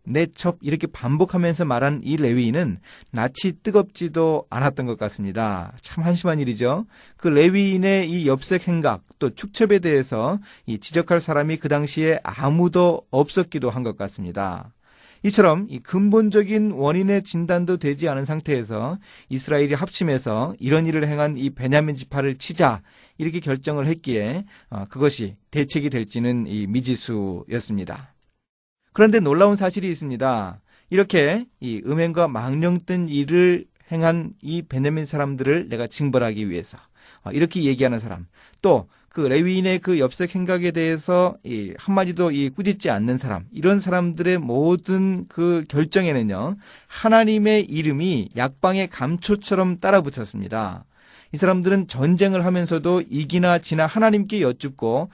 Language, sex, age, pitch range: Korean, male, 30-49, 130-180 Hz